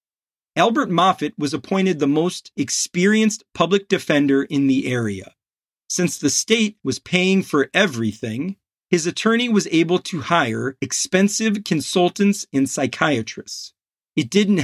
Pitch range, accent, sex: 135-190 Hz, American, male